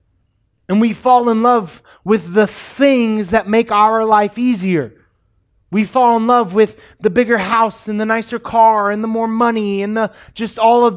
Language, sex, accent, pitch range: English, male, American, 165-230 Hz